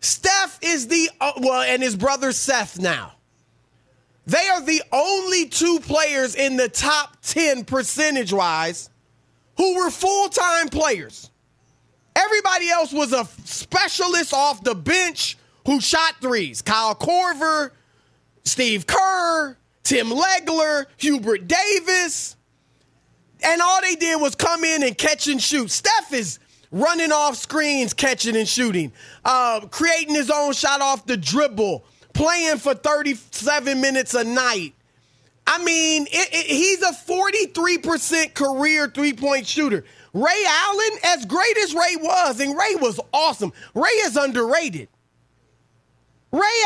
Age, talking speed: 30-49, 130 wpm